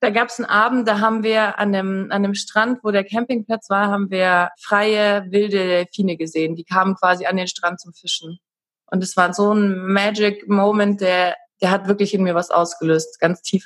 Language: German